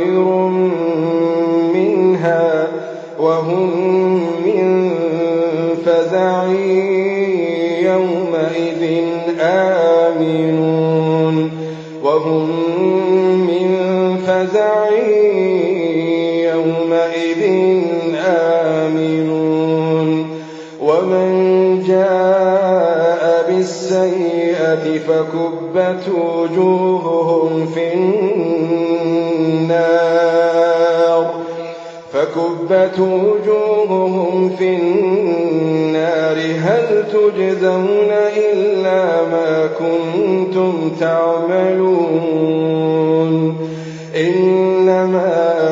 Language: Arabic